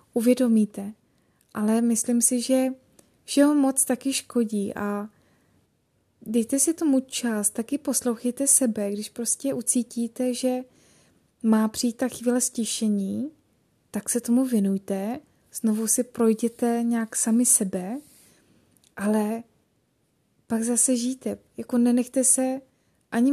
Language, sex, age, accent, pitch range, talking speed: Czech, female, 20-39, native, 220-250 Hz, 115 wpm